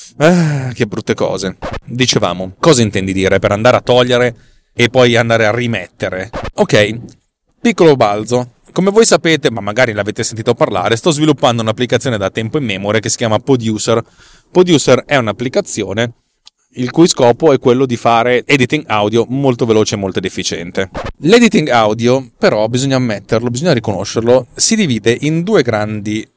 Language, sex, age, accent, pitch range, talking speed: Italian, male, 30-49, native, 110-135 Hz, 155 wpm